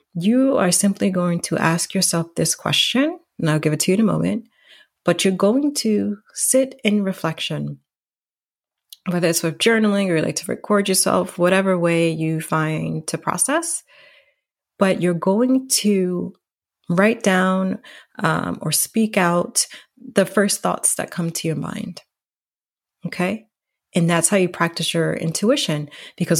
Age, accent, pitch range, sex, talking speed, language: 30-49, American, 165-210 Hz, female, 155 wpm, English